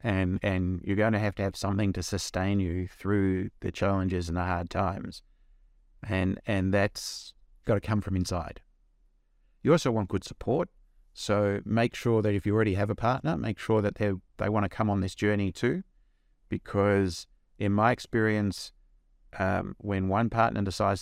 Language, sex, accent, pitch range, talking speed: English, male, Australian, 95-110 Hz, 175 wpm